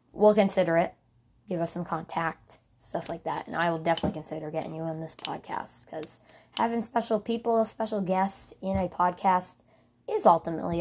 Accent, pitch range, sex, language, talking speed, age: American, 165-200 Hz, female, English, 170 wpm, 20-39